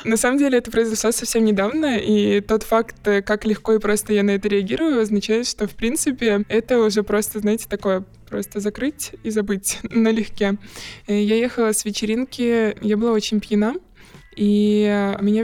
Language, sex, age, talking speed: Russian, male, 20-39, 165 wpm